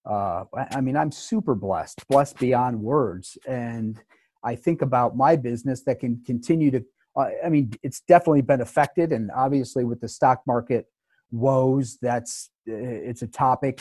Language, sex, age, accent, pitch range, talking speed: English, male, 40-59, American, 120-140 Hz, 155 wpm